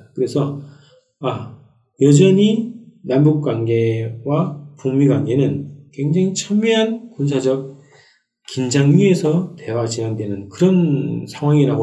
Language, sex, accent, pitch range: Korean, male, native, 120-165 Hz